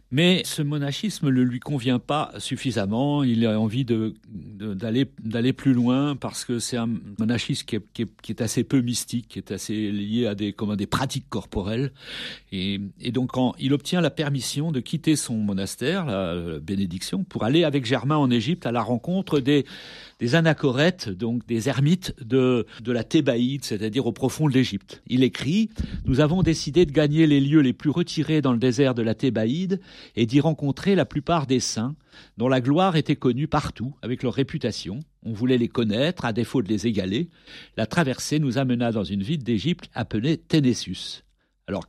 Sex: male